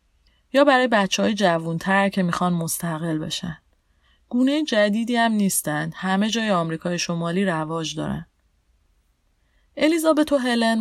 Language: Persian